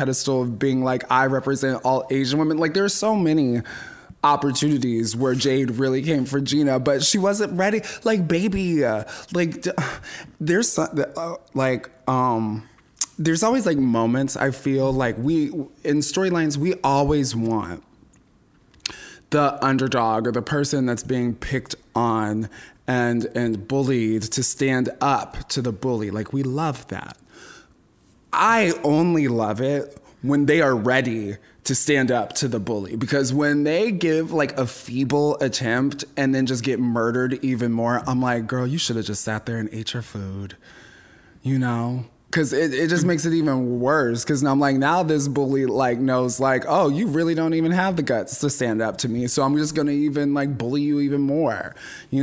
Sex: male